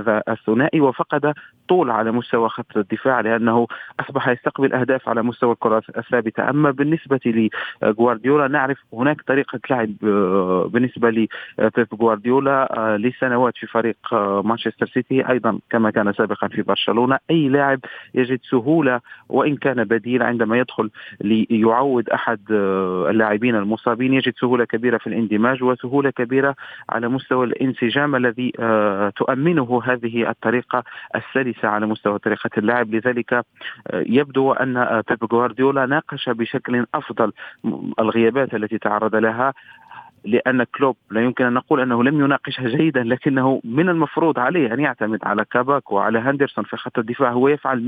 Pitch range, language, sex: 115-135 Hz, Arabic, male